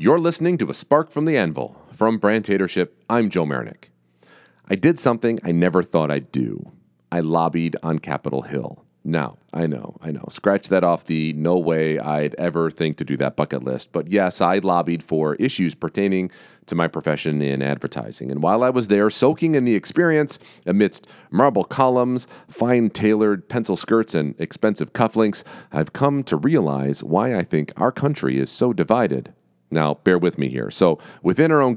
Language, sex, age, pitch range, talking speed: English, male, 40-59, 75-115 Hz, 185 wpm